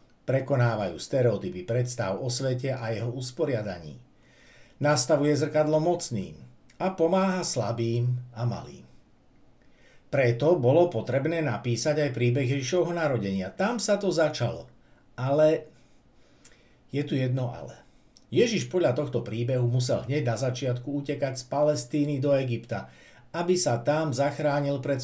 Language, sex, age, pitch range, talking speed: Slovak, male, 60-79, 120-150 Hz, 120 wpm